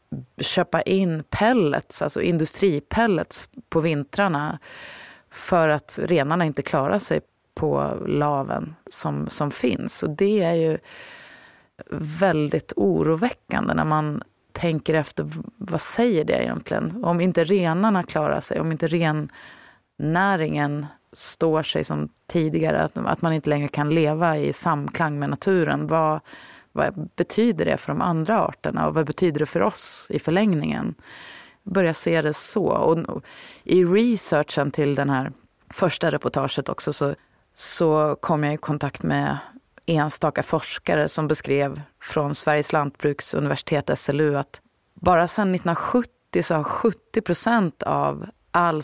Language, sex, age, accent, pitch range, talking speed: Swedish, female, 30-49, native, 145-180 Hz, 135 wpm